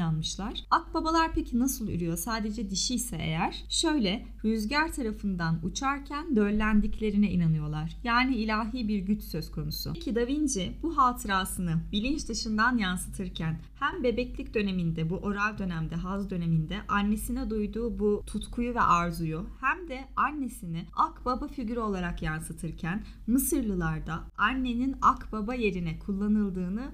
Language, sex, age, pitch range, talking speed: Turkish, female, 10-29, 180-245 Hz, 125 wpm